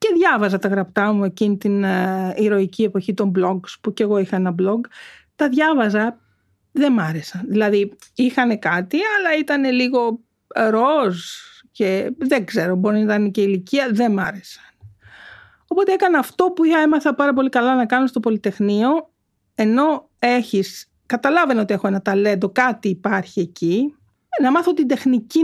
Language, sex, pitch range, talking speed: Greek, female, 195-290 Hz, 160 wpm